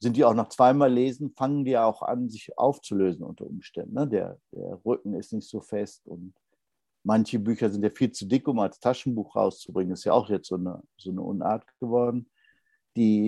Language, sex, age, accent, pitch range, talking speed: German, male, 60-79, German, 105-145 Hz, 205 wpm